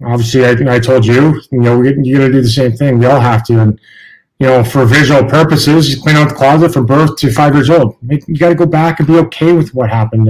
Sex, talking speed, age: male, 270 wpm, 30-49